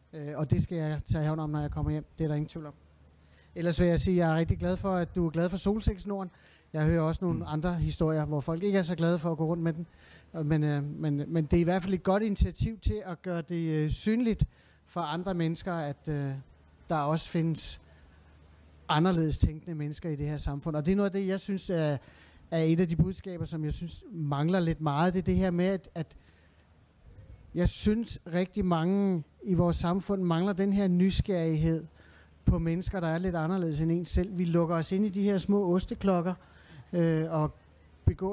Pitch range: 155-190 Hz